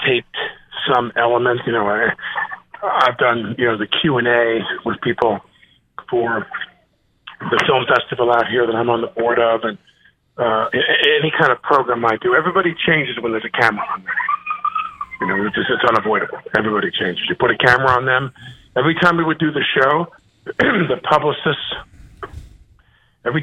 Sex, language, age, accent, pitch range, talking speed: male, English, 50-69, American, 115-160 Hz, 180 wpm